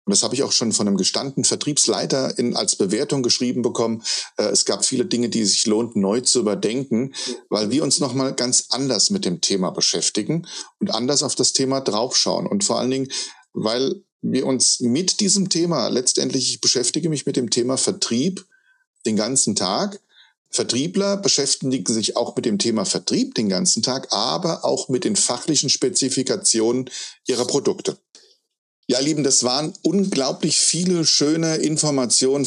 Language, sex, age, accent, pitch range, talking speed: German, male, 40-59, German, 120-155 Hz, 165 wpm